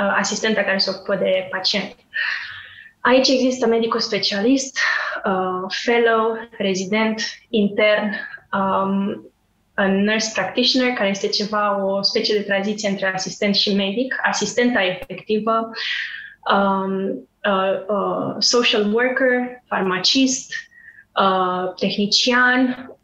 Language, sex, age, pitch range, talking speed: Romanian, female, 20-39, 200-245 Hz, 100 wpm